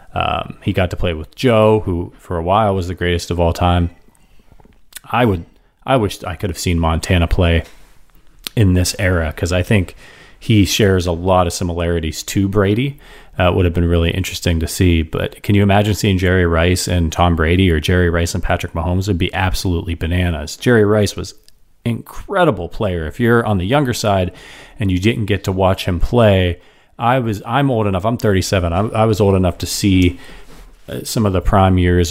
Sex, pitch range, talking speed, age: male, 85-105 Hz, 200 wpm, 30-49